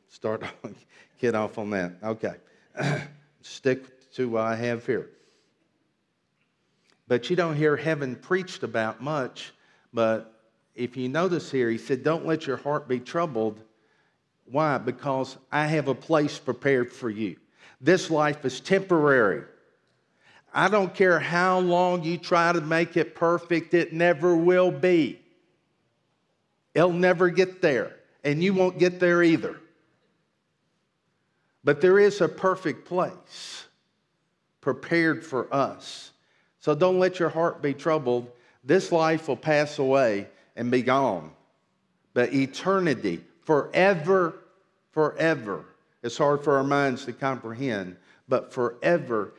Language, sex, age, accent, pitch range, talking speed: English, male, 50-69, American, 125-170 Hz, 130 wpm